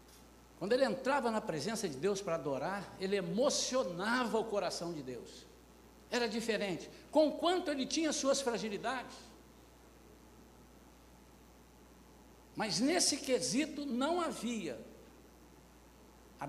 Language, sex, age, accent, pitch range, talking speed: Portuguese, male, 60-79, Brazilian, 145-245 Hz, 105 wpm